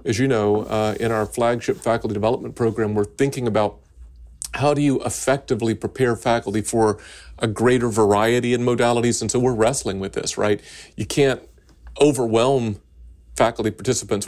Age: 40-59